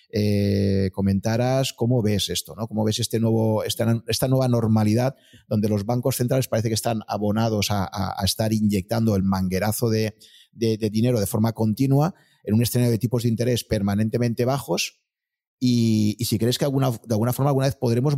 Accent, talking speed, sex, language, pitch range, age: Spanish, 190 wpm, male, Spanish, 105-130 Hz, 30-49